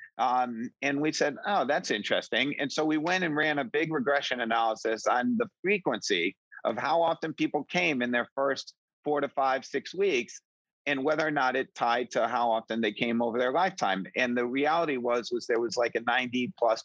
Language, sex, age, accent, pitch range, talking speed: English, male, 50-69, American, 120-155 Hz, 205 wpm